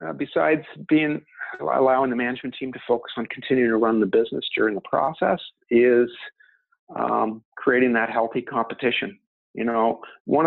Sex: male